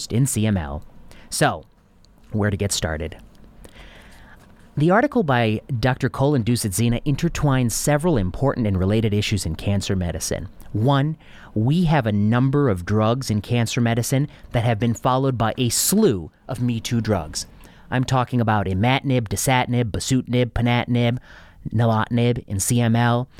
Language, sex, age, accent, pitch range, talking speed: English, male, 30-49, American, 105-125 Hz, 135 wpm